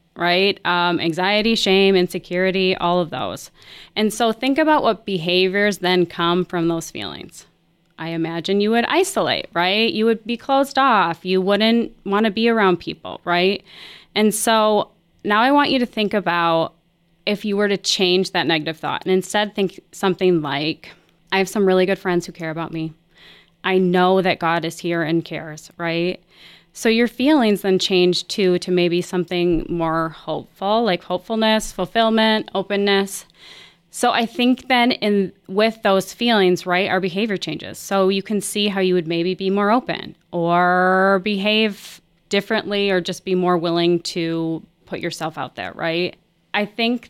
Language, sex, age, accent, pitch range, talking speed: English, female, 20-39, American, 175-210 Hz, 170 wpm